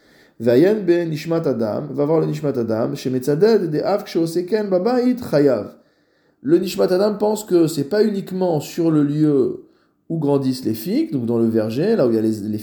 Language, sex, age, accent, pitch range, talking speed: French, male, 20-39, French, 115-165 Hz, 145 wpm